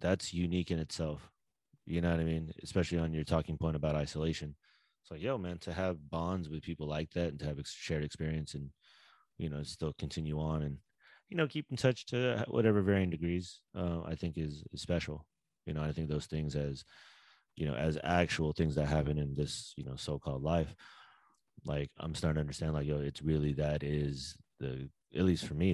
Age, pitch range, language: 30-49, 75-85 Hz, English